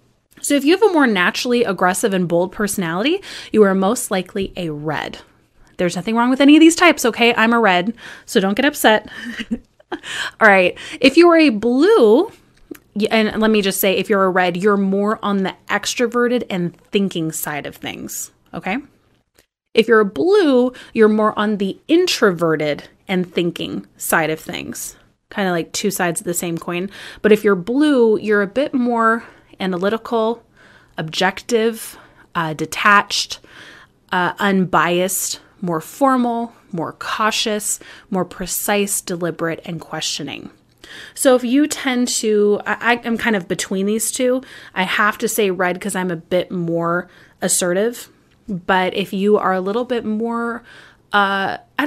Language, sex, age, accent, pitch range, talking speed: English, female, 20-39, American, 185-245 Hz, 160 wpm